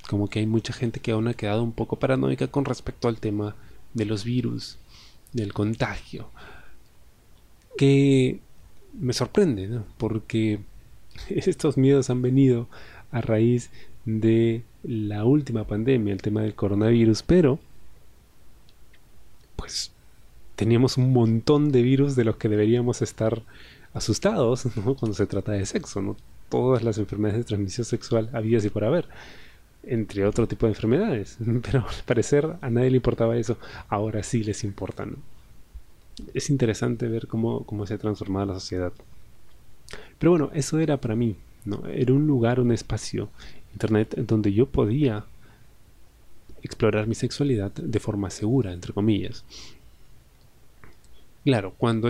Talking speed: 145 wpm